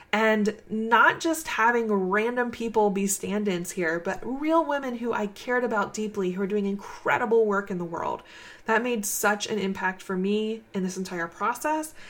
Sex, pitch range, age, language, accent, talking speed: female, 190-230 Hz, 20-39, English, American, 180 wpm